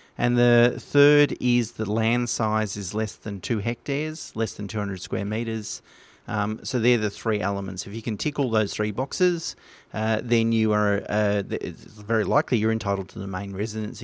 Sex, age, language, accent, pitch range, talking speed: male, 30-49, English, Australian, 105-120 Hz, 190 wpm